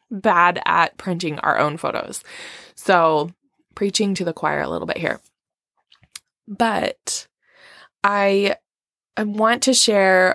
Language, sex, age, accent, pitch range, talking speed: English, female, 20-39, American, 165-200 Hz, 120 wpm